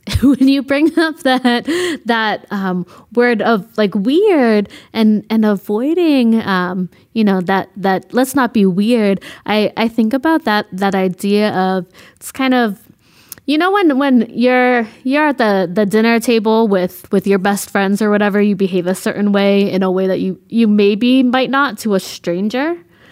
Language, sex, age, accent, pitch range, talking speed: English, female, 20-39, American, 200-260 Hz, 180 wpm